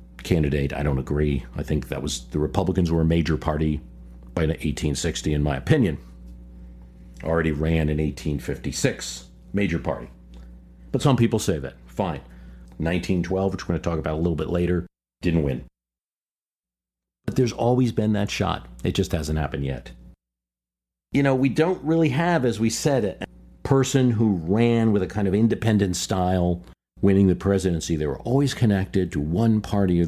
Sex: male